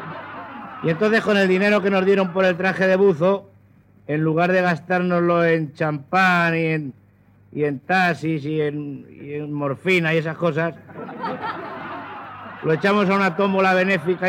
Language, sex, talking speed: Spanish, male, 155 wpm